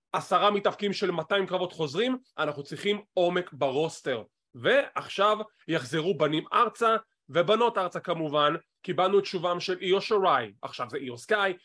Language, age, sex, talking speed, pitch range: English, 30-49, male, 140 wpm, 165-215 Hz